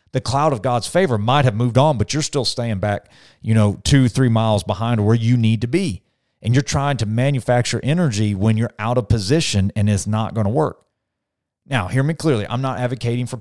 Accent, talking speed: American, 225 wpm